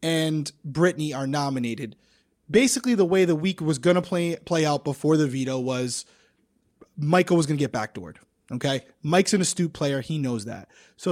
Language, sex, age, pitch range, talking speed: English, male, 20-39, 145-200 Hz, 175 wpm